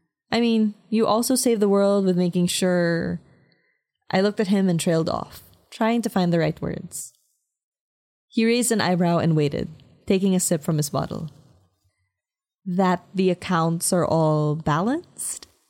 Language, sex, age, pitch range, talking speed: English, female, 20-39, 160-205 Hz, 155 wpm